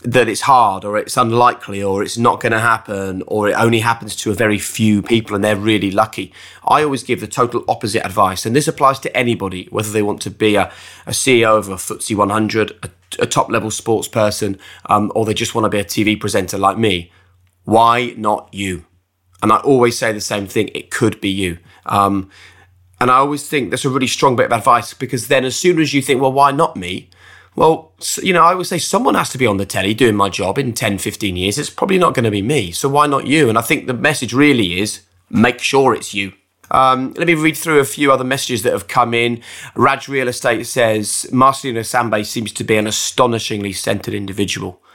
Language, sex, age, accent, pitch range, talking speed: English, male, 20-39, British, 100-125 Hz, 230 wpm